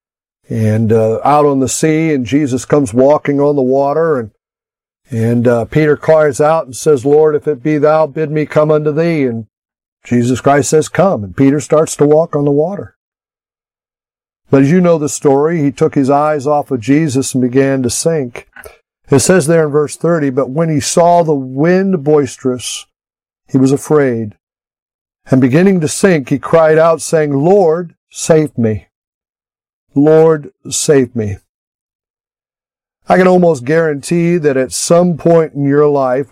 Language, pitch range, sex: English, 130-155 Hz, male